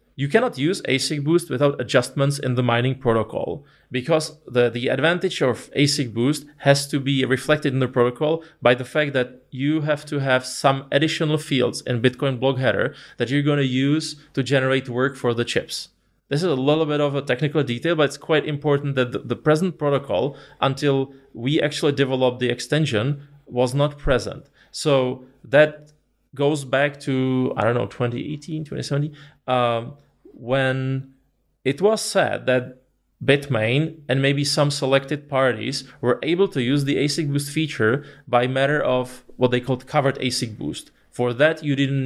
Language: English